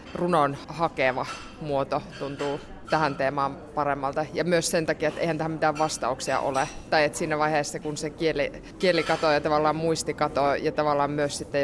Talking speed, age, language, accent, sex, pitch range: 175 wpm, 20-39, Finnish, native, female, 145-160 Hz